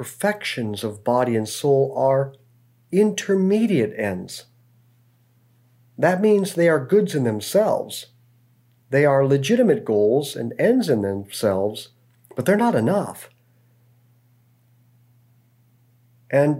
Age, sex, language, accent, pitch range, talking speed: 50-69, male, English, American, 120-155 Hz, 100 wpm